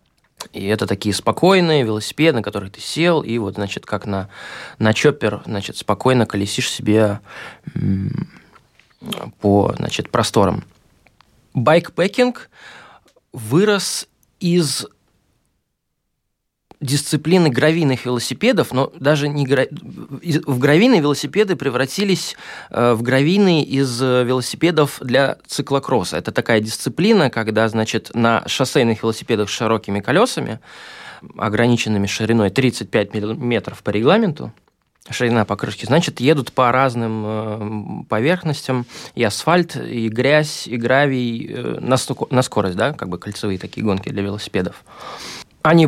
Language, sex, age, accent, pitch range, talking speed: Russian, male, 20-39, native, 110-150 Hz, 110 wpm